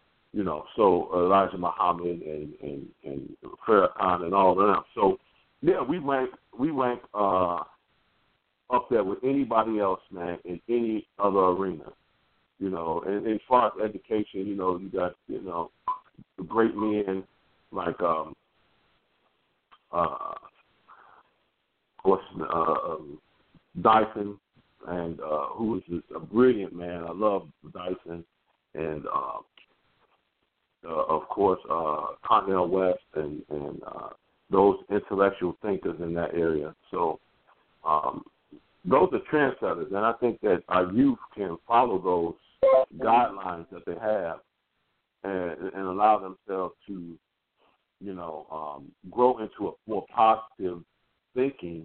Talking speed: 130 wpm